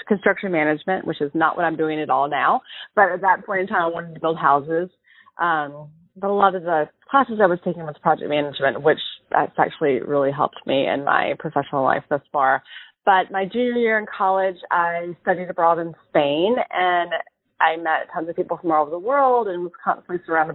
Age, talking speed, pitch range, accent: 30-49, 215 wpm, 150-190 Hz, American